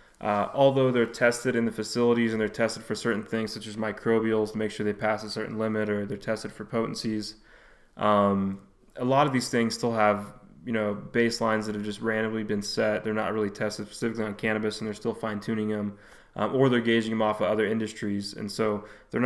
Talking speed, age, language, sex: 220 wpm, 20-39, English, male